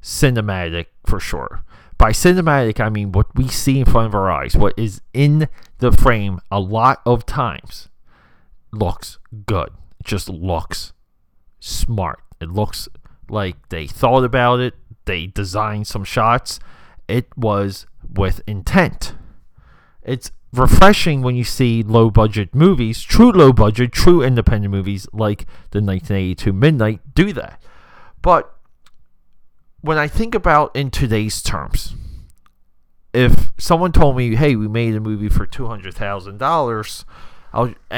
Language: English